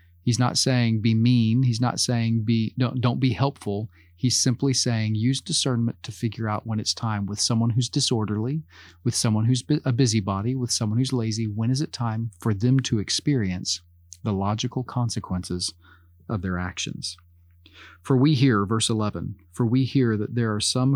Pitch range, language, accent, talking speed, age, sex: 95-125 Hz, English, American, 180 wpm, 40-59, male